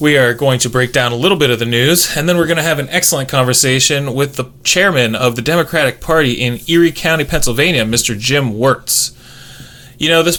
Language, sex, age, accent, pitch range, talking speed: English, male, 20-39, American, 125-150 Hz, 220 wpm